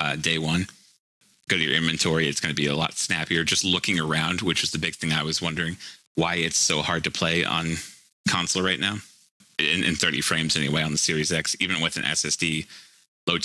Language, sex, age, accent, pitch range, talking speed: English, male, 30-49, American, 75-85 Hz, 220 wpm